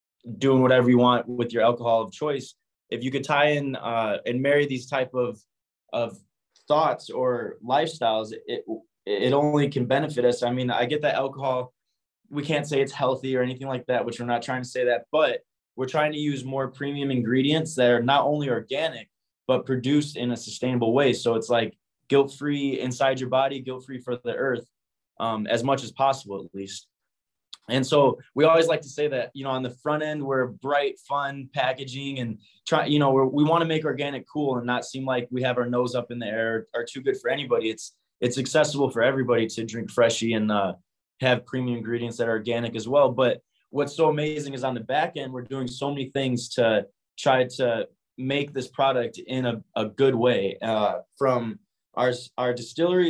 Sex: male